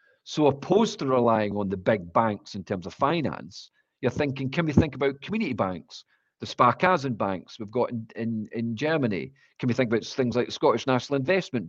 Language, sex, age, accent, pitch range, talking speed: English, male, 40-59, British, 115-150 Hz, 195 wpm